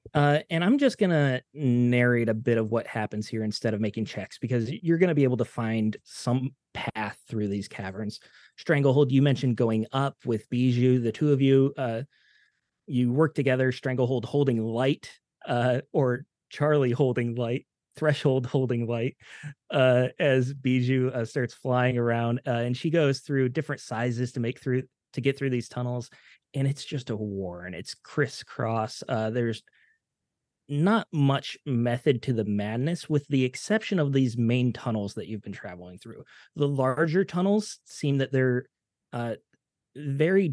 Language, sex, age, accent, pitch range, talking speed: English, male, 30-49, American, 120-145 Hz, 165 wpm